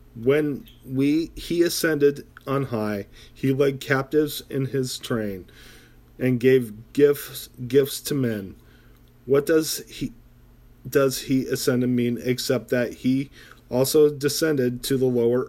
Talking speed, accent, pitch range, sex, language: 130 wpm, American, 120-140 Hz, male, English